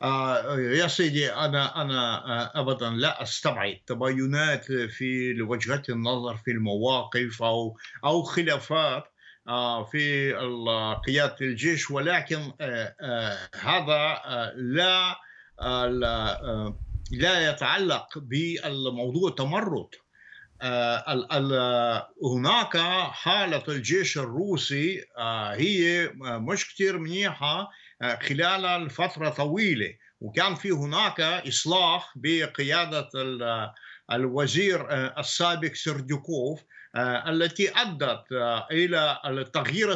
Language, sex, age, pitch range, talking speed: Arabic, male, 50-69, 125-170 Hz, 90 wpm